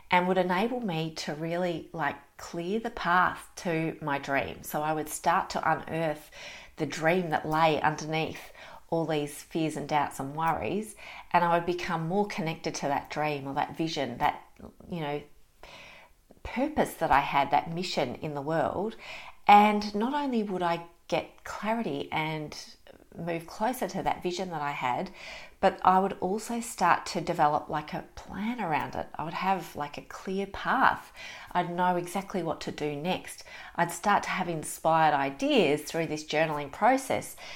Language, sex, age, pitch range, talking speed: English, female, 40-59, 150-185 Hz, 170 wpm